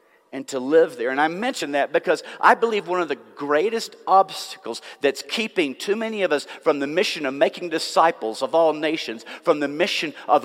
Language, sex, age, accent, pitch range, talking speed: English, male, 50-69, American, 150-190 Hz, 200 wpm